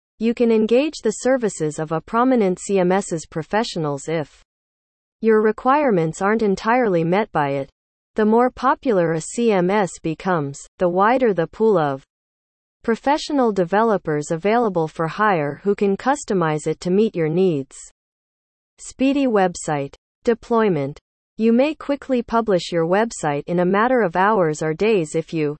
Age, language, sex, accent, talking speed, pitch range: 40-59, English, female, American, 140 wpm, 160-230 Hz